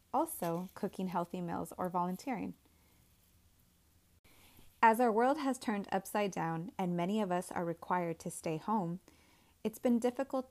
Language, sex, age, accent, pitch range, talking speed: English, female, 20-39, American, 170-220 Hz, 145 wpm